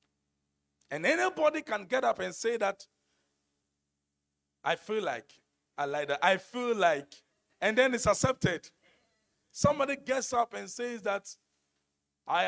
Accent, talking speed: Nigerian, 135 wpm